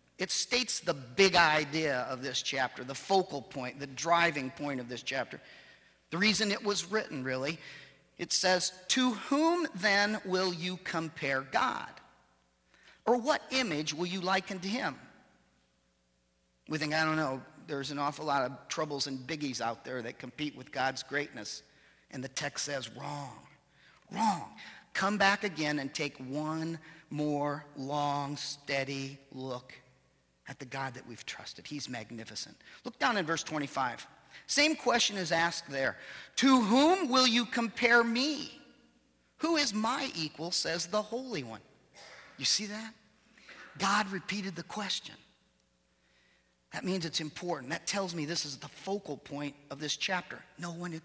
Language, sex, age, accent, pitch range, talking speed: English, male, 40-59, American, 135-195 Hz, 155 wpm